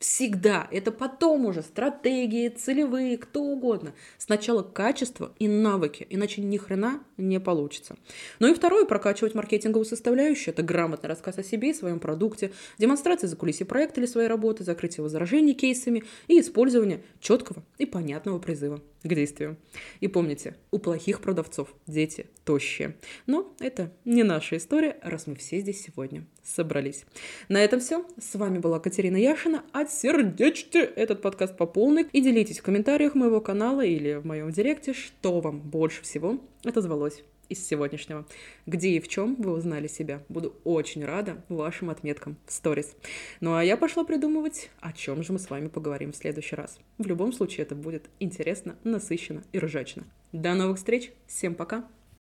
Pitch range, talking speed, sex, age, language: 160-235 Hz, 160 wpm, female, 20-39, Russian